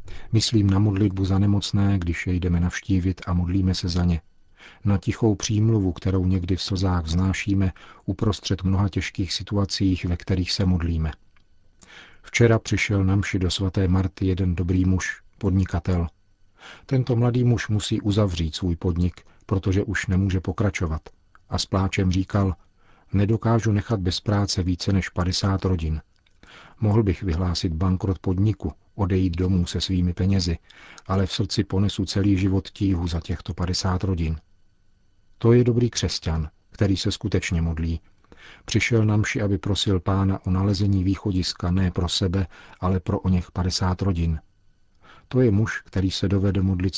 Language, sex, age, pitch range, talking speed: Czech, male, 50-69, 90-100 Hz, 150 wpm